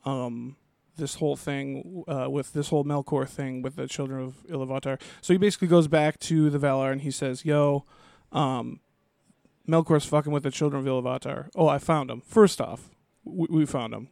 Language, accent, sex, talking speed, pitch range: English, American, male, 190 wpm, 130-155 Hz